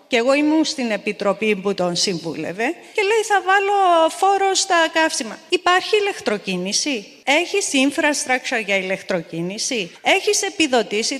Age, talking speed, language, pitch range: 30-49, 125 wpm, Greek, 215-290 Hz